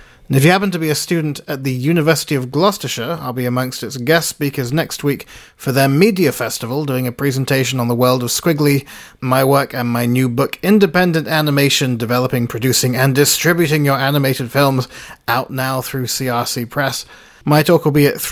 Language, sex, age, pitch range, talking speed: English, male, 30-49, 120-155 Hz, 190 wpm